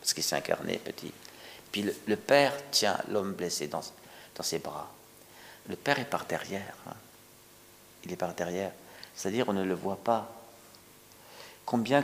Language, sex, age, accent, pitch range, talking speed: French, male, 50-69, French, 90-115 Hz, 165 wpm